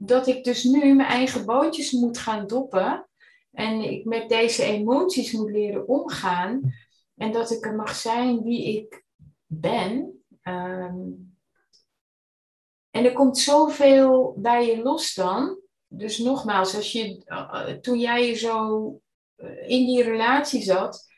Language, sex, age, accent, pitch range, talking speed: Dutch, female, 30-49, Dutch, 185-250 Hz, 125 wpm